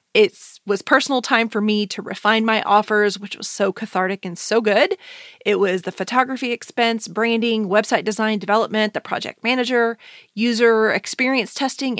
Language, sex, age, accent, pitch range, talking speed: English, female, 30-49, American, 200-255 Hz, 160 wpm